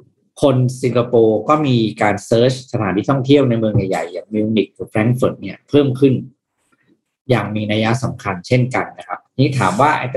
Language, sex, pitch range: Thai, male, 105-135 Hz